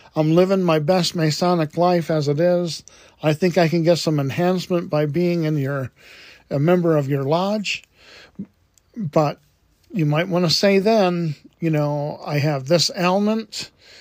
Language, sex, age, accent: English, male, 50-69, American